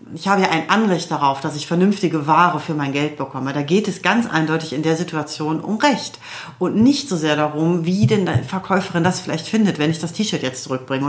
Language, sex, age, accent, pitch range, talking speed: German, female, 40-59, German, 150-185 Hz, 225 wpm